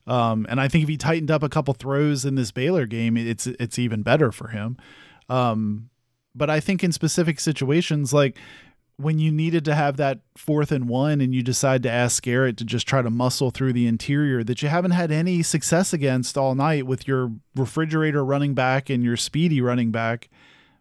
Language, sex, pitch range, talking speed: English, male, 125-160 Hz, 205 wpm